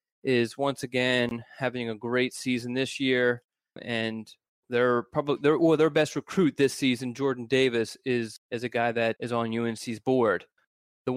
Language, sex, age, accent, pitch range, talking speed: English, male, 20-39, American, 120-145 Hz, 165 wpm